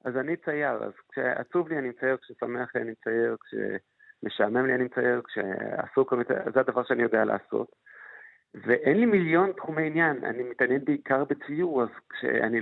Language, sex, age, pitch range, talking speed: Hebrew, male, 50-69, 125-150 Hz, 160 wpm